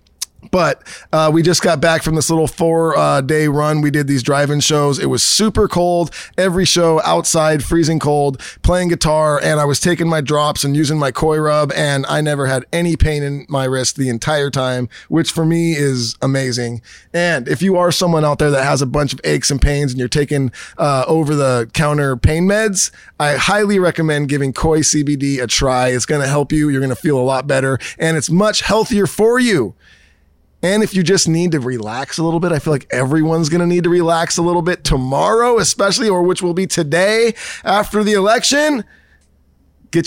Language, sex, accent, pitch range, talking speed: English, male, American, 140-170 Hz, 210 wpm